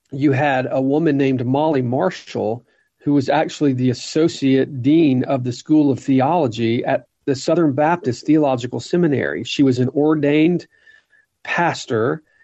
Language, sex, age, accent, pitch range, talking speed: English, male, 40-59, American, 125-155 Hz, 140 wpm